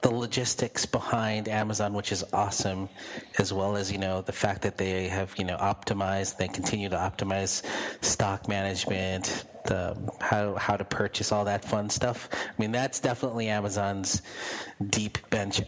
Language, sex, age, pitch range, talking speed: English, male, 30-49, 95-115 Hz, 160 wpm